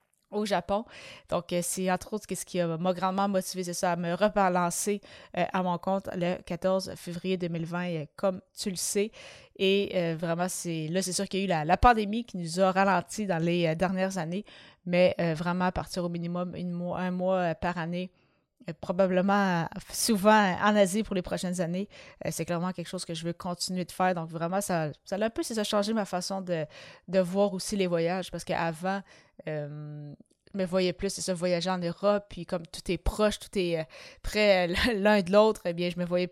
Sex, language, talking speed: female, French, 210 wpm